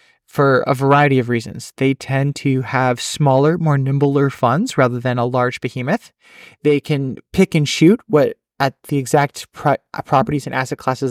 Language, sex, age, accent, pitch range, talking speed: English, male, 30-49, American, 130-160 Hz, 175 wpm